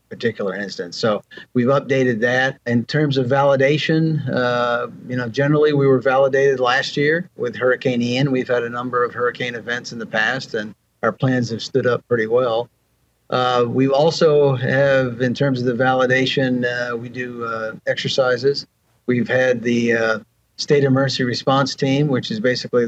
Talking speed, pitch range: 170 wpm, 120-140 Hz